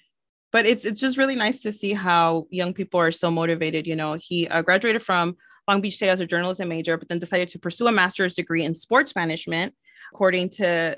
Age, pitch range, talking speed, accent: 20-39, 165-200 Hz, 220 wpm, American